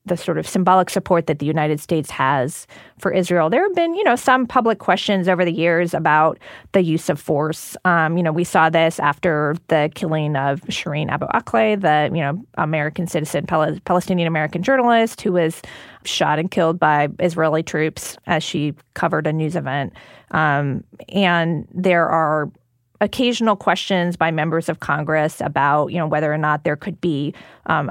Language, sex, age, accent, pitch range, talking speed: English, female, 30-49, American, 155-190 Hz, 175 wpm